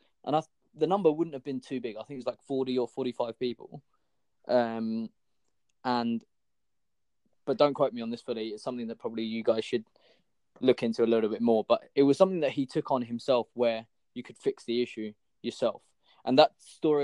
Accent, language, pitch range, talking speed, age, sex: British, English, 110-130 Hz, 210 wpm, 20-39, male